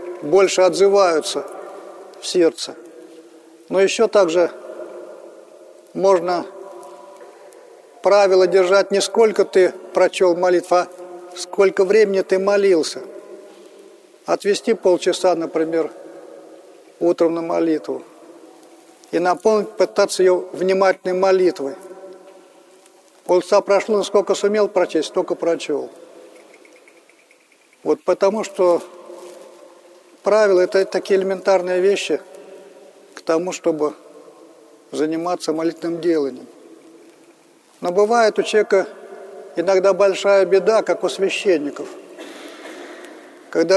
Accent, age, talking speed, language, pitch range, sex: native, 50-69, 90 wpm, Russian, 175-195 Hz, male